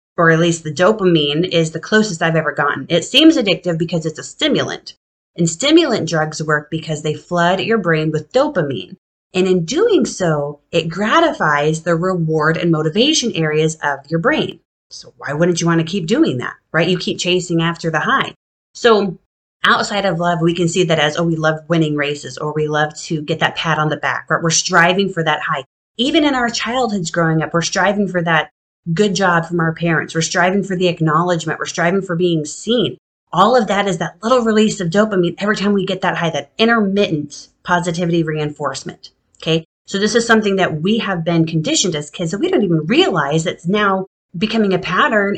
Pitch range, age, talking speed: 160-200 Hz, 30-49, 205 wpm